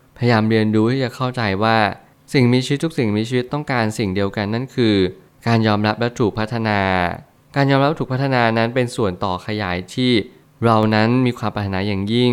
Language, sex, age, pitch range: Thai, male, 20-39, 105-125 Hz